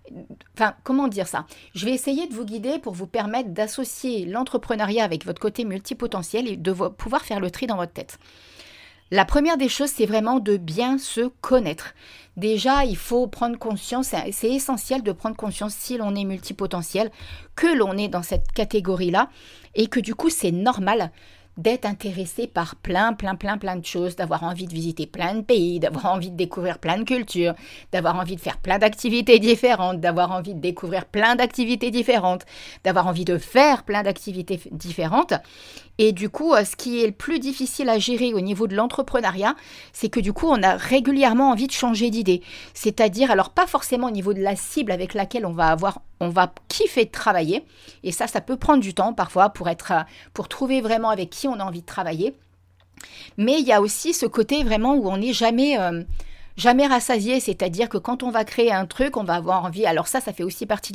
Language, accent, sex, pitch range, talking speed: French, French, female, 190-250 Hz, 200 wpm